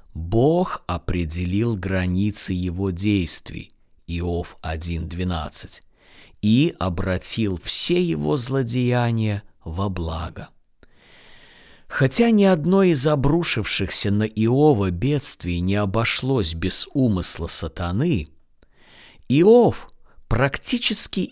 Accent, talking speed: native, 80 wpm